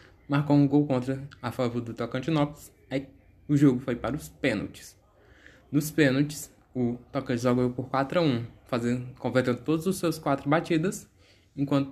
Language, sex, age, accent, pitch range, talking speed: Portuguese, male, 10-29, Brazilian, 115-145 Hz, 155 wpm